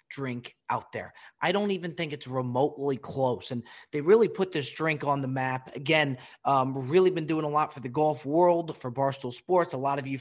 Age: 30-49